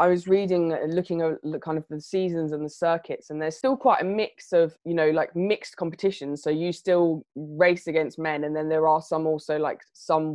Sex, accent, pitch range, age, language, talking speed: female, British, 155-185 Hz, 20-39, English, 220 wpm